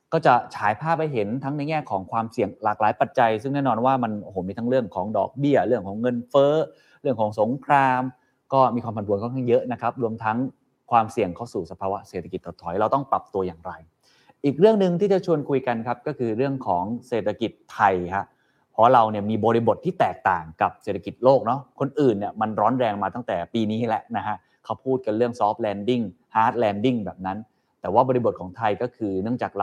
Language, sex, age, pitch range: Thai, male, 20-39, 105-140 Hz